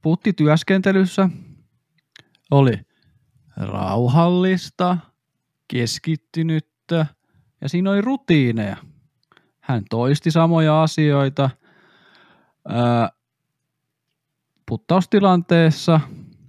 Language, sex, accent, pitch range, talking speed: Finnish, male, native, 115-155 Hz, 50 wpm